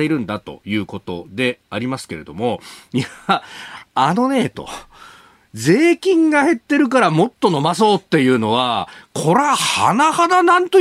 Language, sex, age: Japanese, male, 40-59